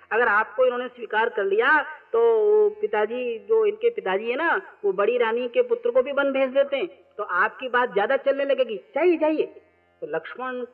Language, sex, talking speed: Hindi, female, 185 wpm